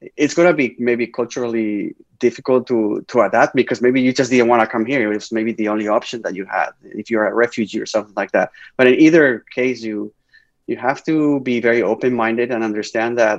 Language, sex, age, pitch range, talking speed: English, male, 20-39, 110-125 Hz, 225 wpm